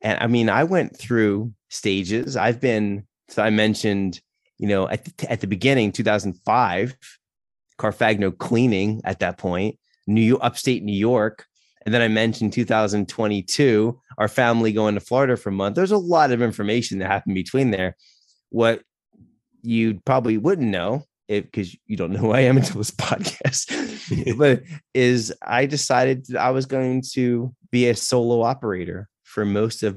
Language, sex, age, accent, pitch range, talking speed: English, male, 30-49, American, 100-125 Hz, 165 wpm